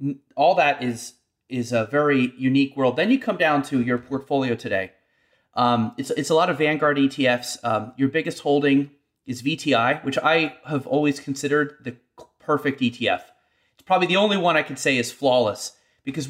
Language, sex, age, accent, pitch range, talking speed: English, male, 30-49, American, 125-160 Hz, 180 wpm